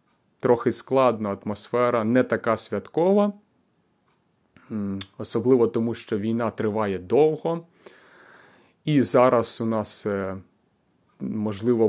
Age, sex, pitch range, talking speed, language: 30-49, male, 110-130 Hz, 85 wpm, Ukrainian